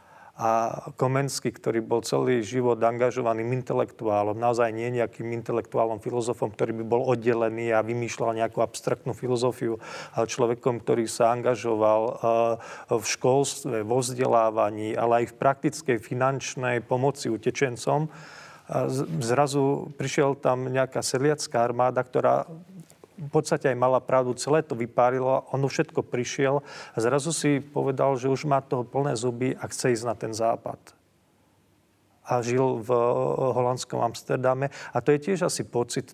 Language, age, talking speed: Slovak, 40-59, 135 wpm